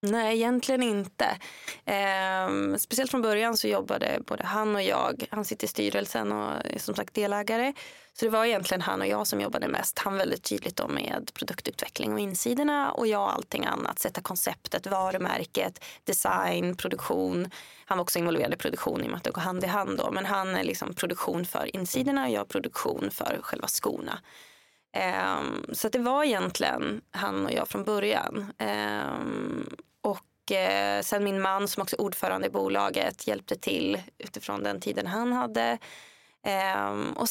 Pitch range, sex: 175-230 Hz, female